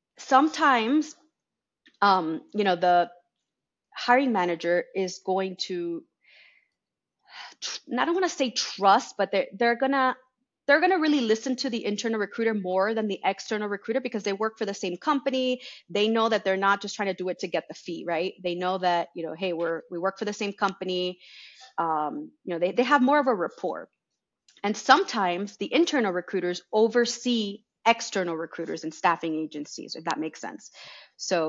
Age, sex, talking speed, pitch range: 30-49, female, 185 wpm, 185-250 Hz